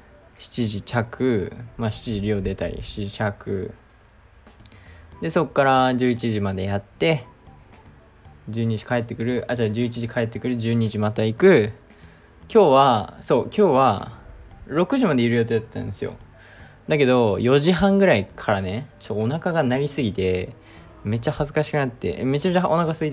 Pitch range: 105-125 Hz